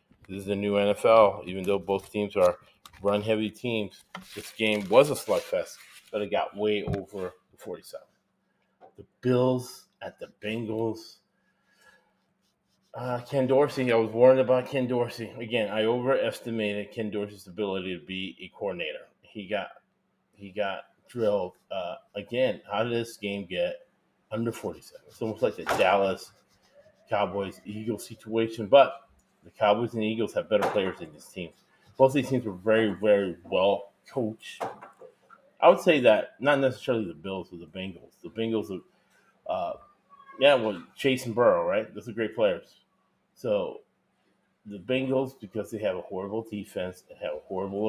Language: English